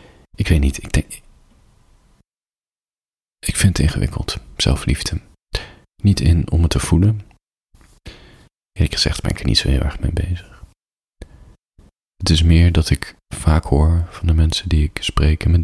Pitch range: 75-90 Hz